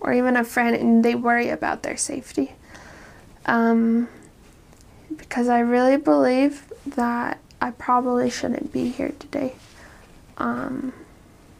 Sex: female